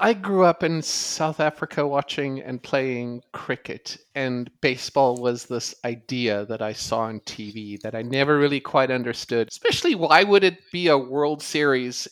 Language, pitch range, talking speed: English, 120-165 Hz, 170 wpm